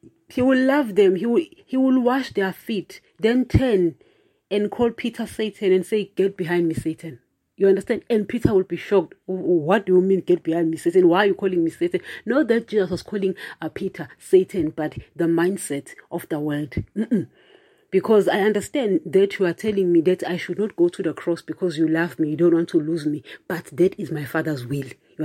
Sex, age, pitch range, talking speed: female, 30-49, 170-225 Hz, 220 wpm